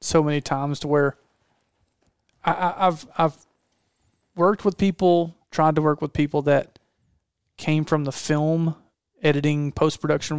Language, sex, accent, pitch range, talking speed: English, male, American, 140-155 Hz, 140 wpm